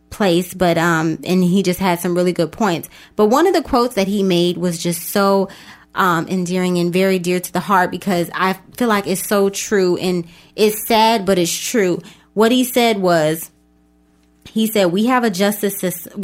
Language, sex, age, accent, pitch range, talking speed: English, female, 20-39, American, 175-215 Hz, 200 wpm